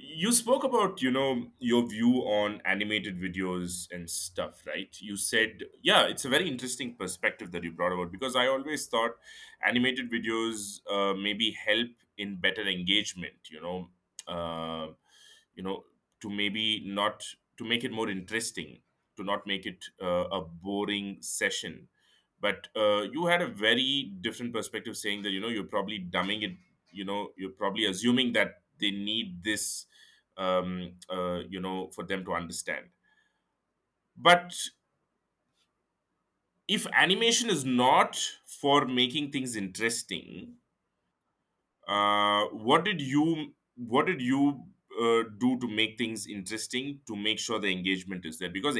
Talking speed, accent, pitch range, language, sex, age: 150 wpm, Indian, 95-125 Hz, English, male, 20-39